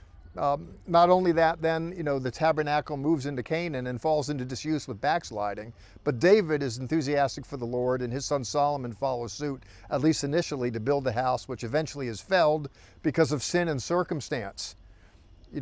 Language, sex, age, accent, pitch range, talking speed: English, male, 50-69, American, 120-160 Hz, 185 wpm